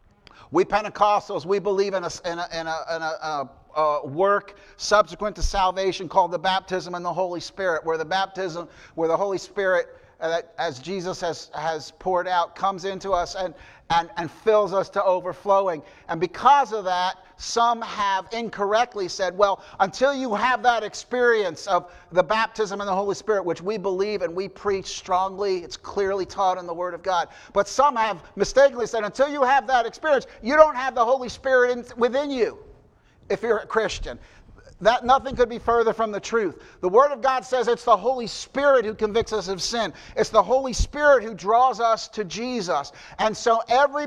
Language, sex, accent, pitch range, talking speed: English, male, American, 190-240 Hz, 190 wpm